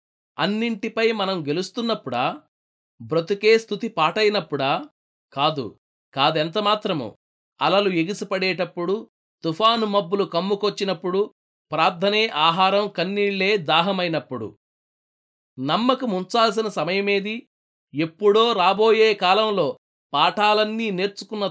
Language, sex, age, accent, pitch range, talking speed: Telugu, male, 30-49, native, 175-215 Hz, 70 wpm